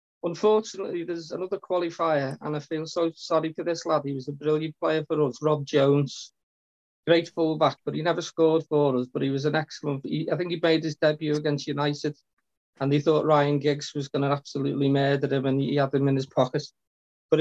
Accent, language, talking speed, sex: British, English, 215 wpm, male